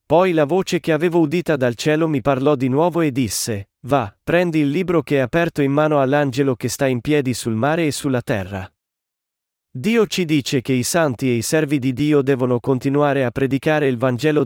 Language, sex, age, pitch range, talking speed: Italian, male, 40-59, 125-160 Hz, 210 wpm